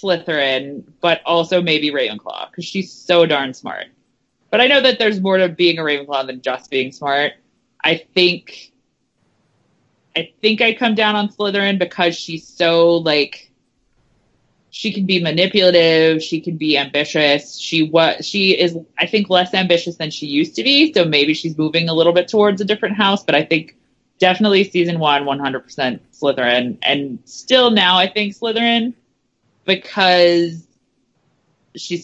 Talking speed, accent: 160 wpm, American